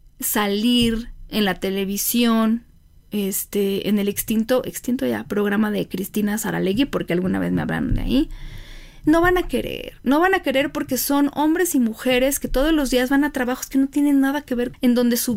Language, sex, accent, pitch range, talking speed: Spanish, female, Mexican, 215-280 Hz, 195 wpm